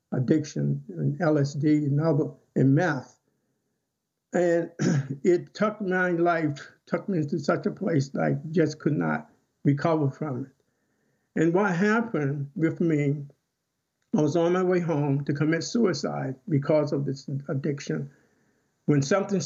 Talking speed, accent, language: 140 wpm, American, English